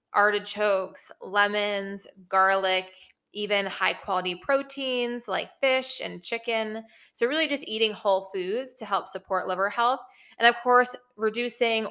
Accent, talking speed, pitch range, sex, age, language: American, 130 wpm, 185-230 Hz, female, 20-39, English